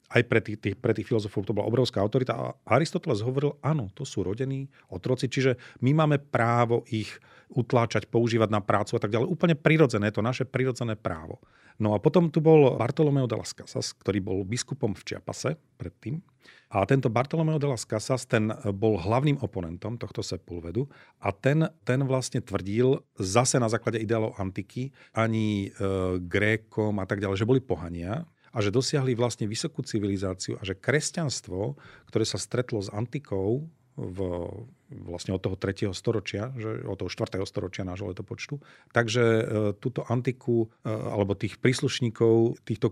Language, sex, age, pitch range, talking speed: Slovak, male, 40-59, 105-130 Hz, 160 wpm